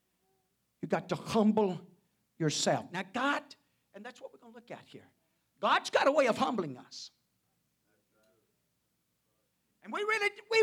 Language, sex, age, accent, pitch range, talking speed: English, male, 50-69, American, 210-280 Hz, 150 wpm